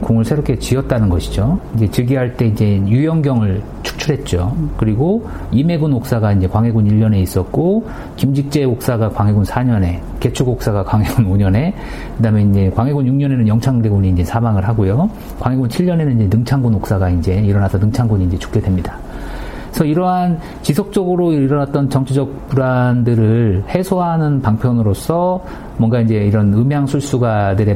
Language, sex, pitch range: Korean, male, 95-140 Hz